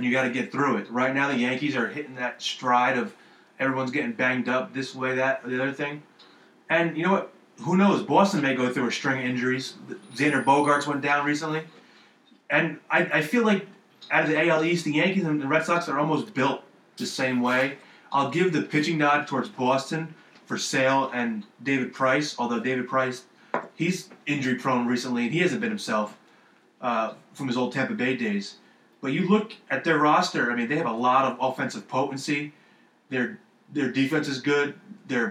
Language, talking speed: English, 200 wpm